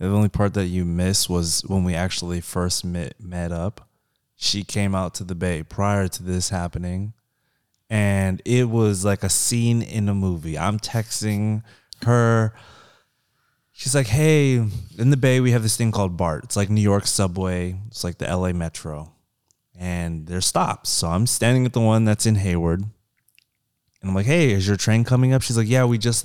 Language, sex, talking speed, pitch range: English, male, 190 wpm, 95-115 Hz